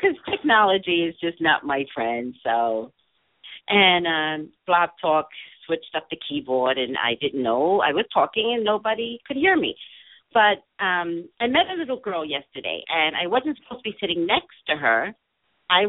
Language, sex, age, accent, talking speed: English, female, 50-69, American, 180 wpm